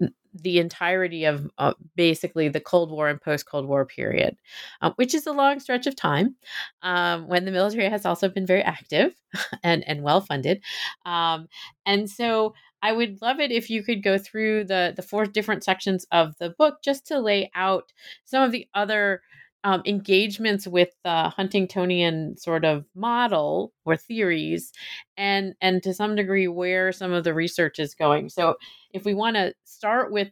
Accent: American